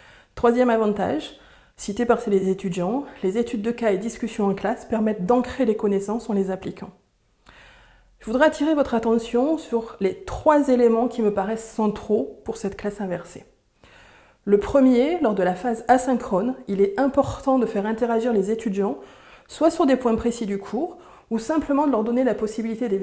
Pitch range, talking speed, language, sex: 200-245 Hz, 175 wpm, French, female